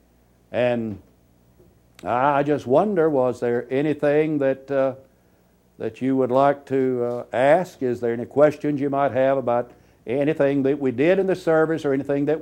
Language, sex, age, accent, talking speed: English, male, 60-79, American, 165 wpm